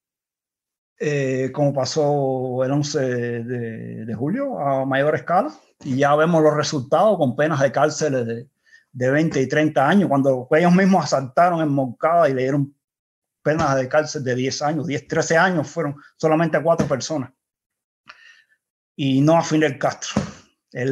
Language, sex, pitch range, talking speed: Spanish, male, 130-160 Hz, 160 wpm